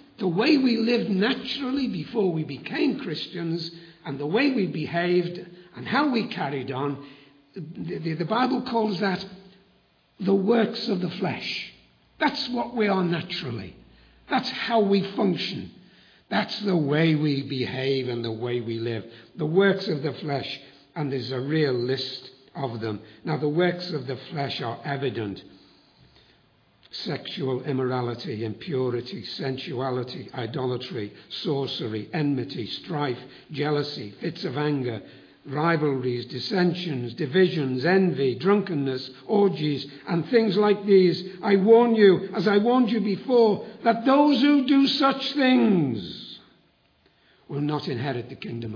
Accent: British